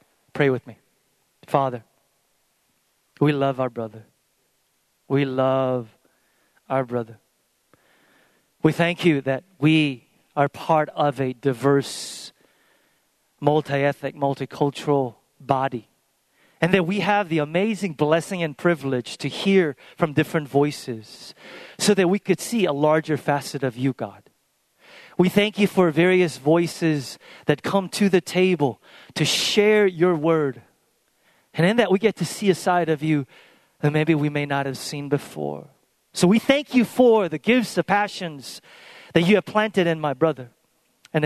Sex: male